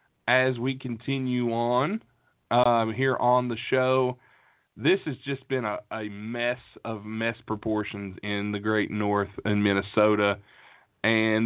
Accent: American